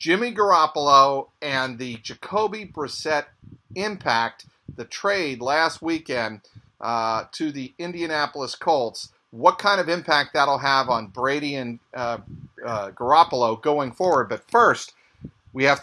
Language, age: English, 50-69